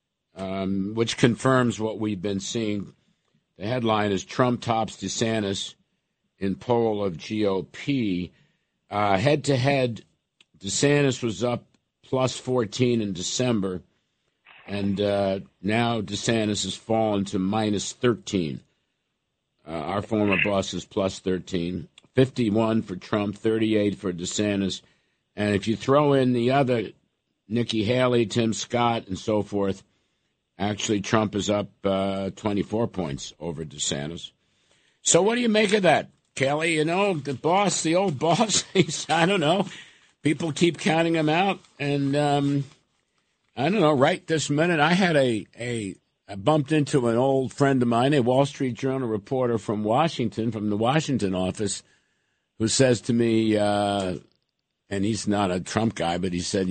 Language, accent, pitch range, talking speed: English, American, 100-130 Hz, 150 wpm